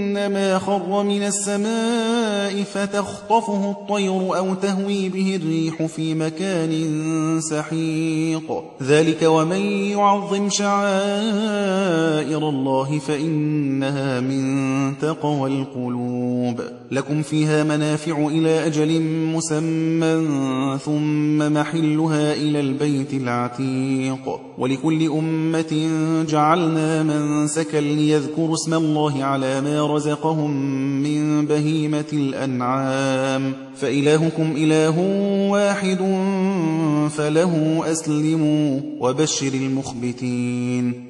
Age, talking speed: 30-49, 80 wpm